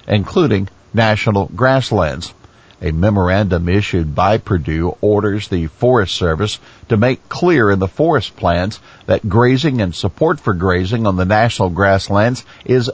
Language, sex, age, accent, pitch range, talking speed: English, male, 50-69, American, 90-115 Hz, 140 wpm